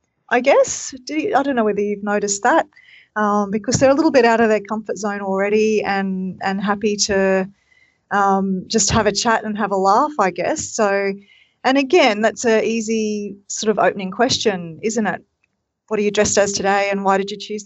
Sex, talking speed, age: female, 200 wpm, 30-49